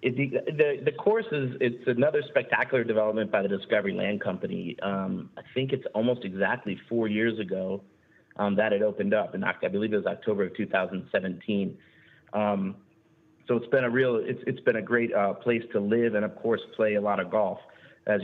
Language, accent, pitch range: English, American, 105-125 Hz